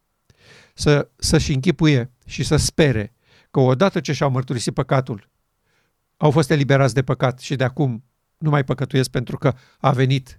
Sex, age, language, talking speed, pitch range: male, 50-69, Romanian, 155 wpm, 135-175 Hz